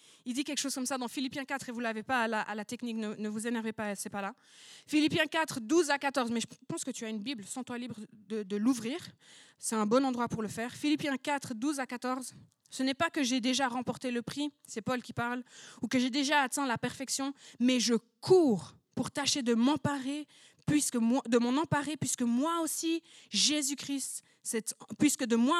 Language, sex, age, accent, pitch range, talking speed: French, female, 20-39, French, 245-320 Hz, 230 wpm